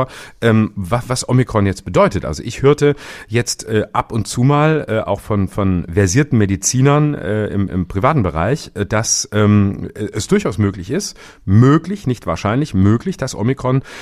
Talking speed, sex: 135 wpm, male